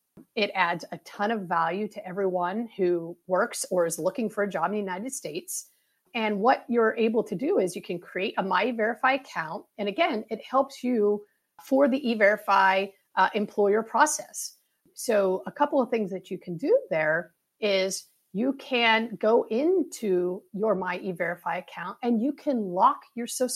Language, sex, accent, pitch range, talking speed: English, female, American, 185-250 Hz, 180 wpm